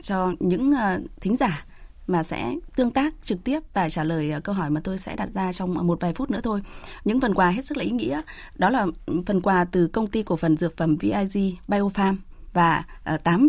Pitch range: 170-215 Hz